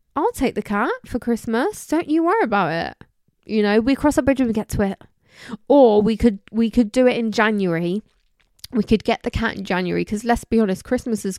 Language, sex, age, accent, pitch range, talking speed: English, female, 20-39, British, 185-240 Hz, 230 wpm